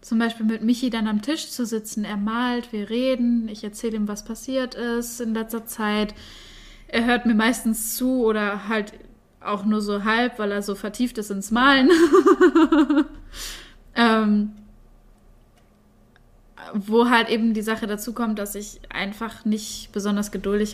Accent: German